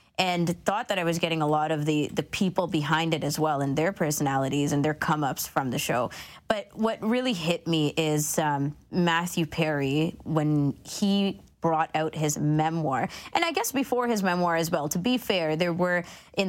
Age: 20-39